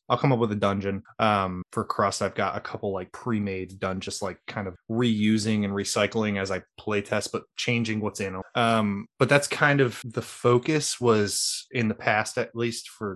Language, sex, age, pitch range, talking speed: English, male, 20-39, 100-120 Hz, 205 wpm